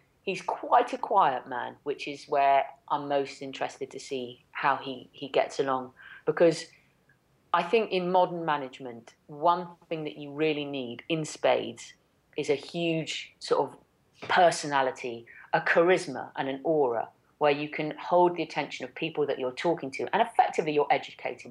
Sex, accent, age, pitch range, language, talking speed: female, British, 30-49, 135-175 Hz, English, 165 wpm